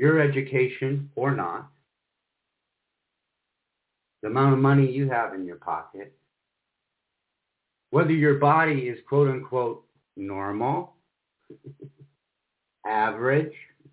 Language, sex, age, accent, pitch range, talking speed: English, male, 50-69, American, 125-155 Hz, 90 wpm